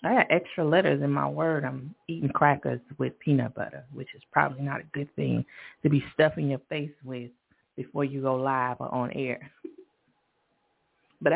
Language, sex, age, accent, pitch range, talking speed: English, female, 30-49, American, 150-205 Hz, 180 wpm